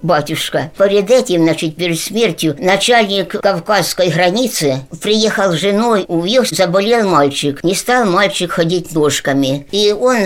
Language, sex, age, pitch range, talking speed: Russian, male, 60-79, 160-200 Hz, 130 wpm